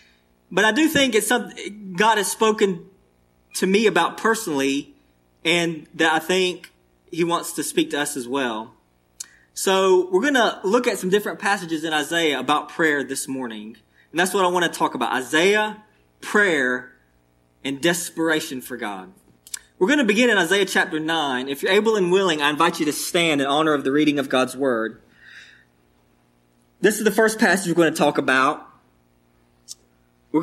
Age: 20-39